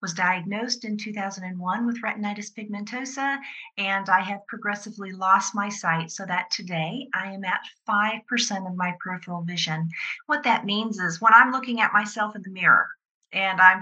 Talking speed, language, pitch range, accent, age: 170 wpm, English, 180-220 Hz, American, 40-59